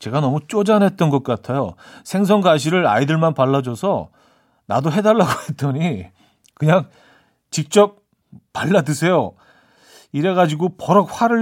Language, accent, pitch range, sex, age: Korean, native, 120-175 Hz, male, 40-59